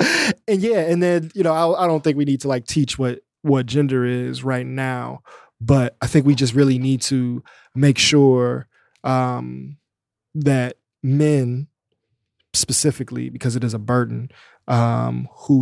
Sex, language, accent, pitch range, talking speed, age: male, English, American, 125-140 Hz, 160 wpm, 20-39